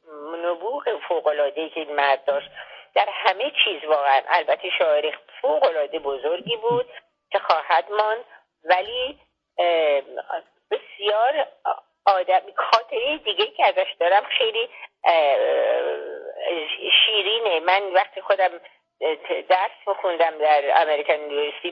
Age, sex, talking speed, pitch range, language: 50-69, female, 100 wpm, 155-225 Hz, Persian